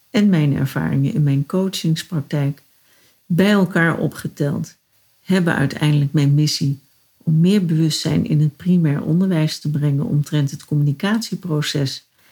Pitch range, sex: 145-185 Hz, female